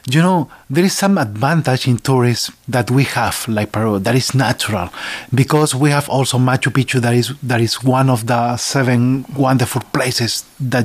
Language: English